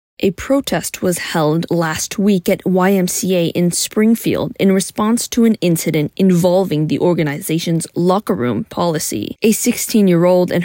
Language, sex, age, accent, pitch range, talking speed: English, female, 20-39, American, 165-215 Hz, 135 wpm